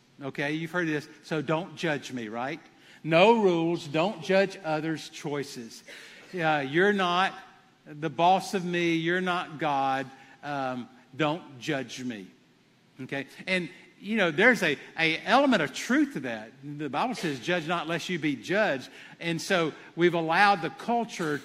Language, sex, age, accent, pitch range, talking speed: English, male, 50-69, American, 140-185 Hz, 160 wpm